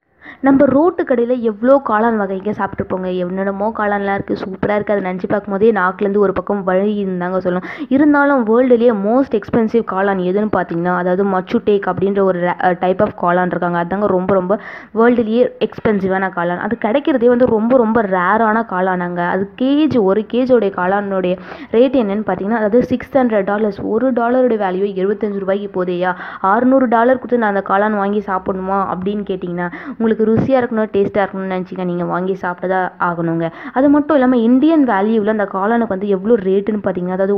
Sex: female